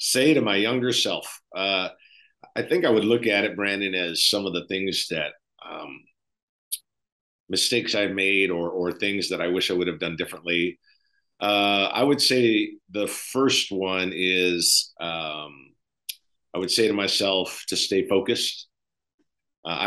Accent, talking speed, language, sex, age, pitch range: American, 160 wpm, English, male, 50-69, 90-110 Hz